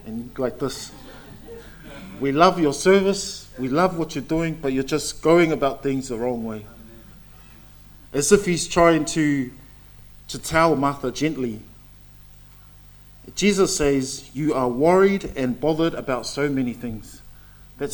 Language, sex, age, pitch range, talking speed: English, male, 50-69, 130-165 Hz, 140 wpm